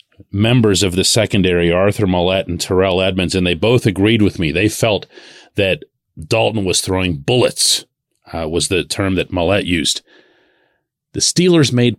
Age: 40-59